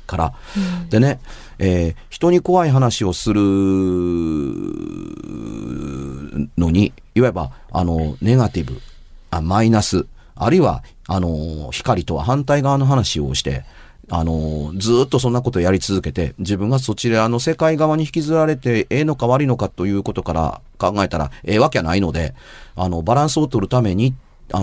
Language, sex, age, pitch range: Japanese, male, 40-59, 90-145 Hz